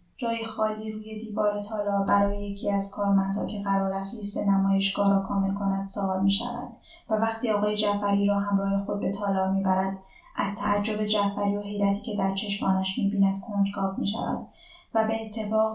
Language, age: Persian, 10-29